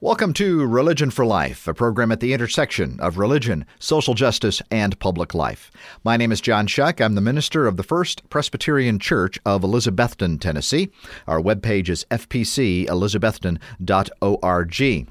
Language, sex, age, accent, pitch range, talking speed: English, male, 50-69, American, 100-140 Hz, 145 wpm